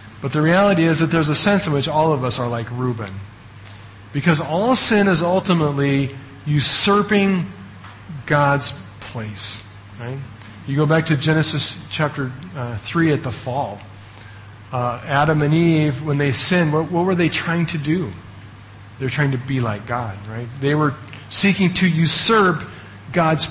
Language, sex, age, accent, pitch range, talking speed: English, male, 40-59, American, 110-155 Hz, 165 wpm